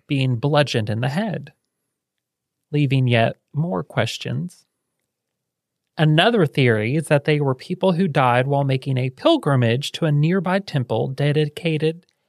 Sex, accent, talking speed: male, American, 130 wpm